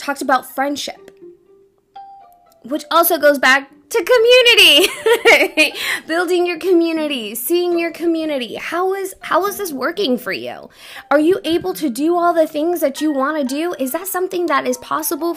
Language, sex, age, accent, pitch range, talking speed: English, female, 20-39, American, 205-310 Hz, 165 wpm